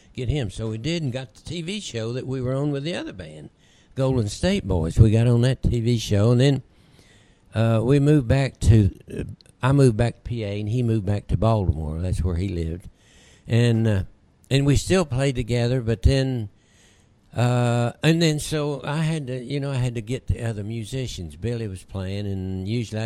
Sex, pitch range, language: male, 95-120 Hz, English